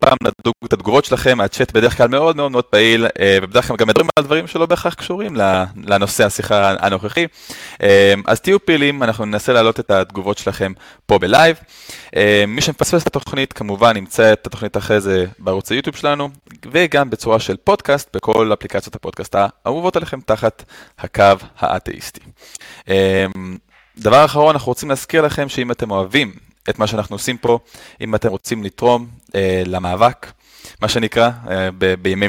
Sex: male